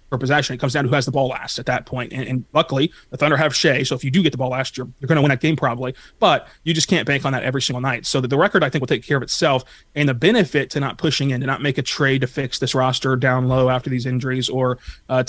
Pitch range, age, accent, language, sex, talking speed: 130-140 Hz, 20-39, American, English, male, 315 wpm